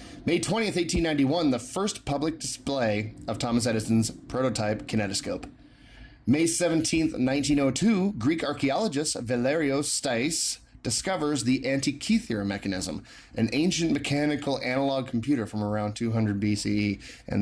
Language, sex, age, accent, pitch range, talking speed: English, male, 30-49, American, 110-145 Hz, 115 wpm